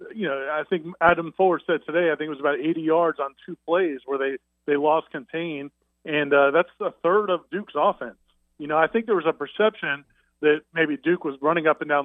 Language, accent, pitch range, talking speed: English, American, 150-190 Hz, 235 wpm